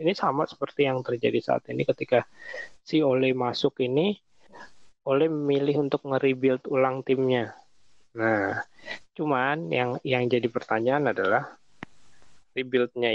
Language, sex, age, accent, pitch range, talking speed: English, male, 20-39, Indonesian, 115-140 Hz, 120 wpm